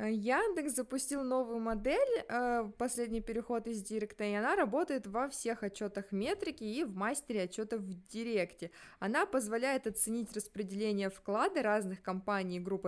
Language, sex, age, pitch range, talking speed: Russian, female, 20-39, 200-250 Hz, 140 wpm